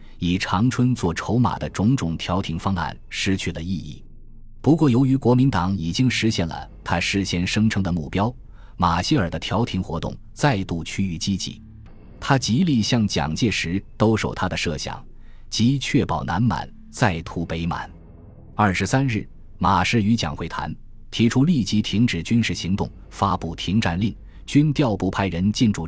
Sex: male